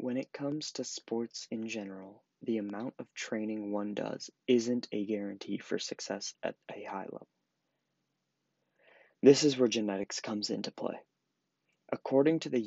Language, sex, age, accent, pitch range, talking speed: English, male, 20-39, American, 105-125 Hz, 150 wpm